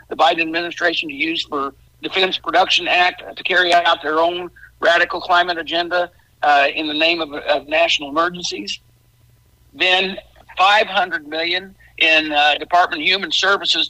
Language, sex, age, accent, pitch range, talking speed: English, male, 60-79, American, 165-210 Hz, 145 wpm